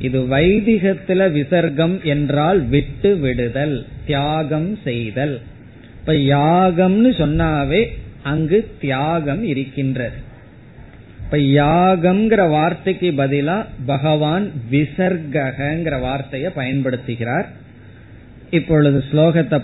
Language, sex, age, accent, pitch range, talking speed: Tamil, male, 20-39, native, 130-165 Hz, 60 wpm